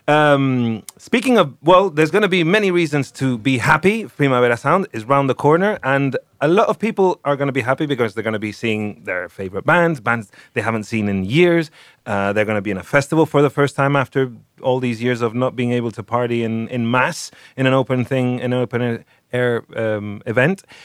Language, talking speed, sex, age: English, 225 wpm, male, 30-49